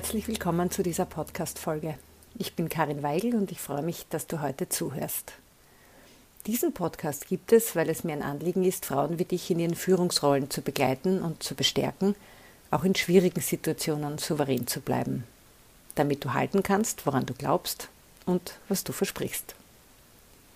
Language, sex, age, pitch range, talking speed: German, female, 50-69, 155-190 Hz, 165 wpm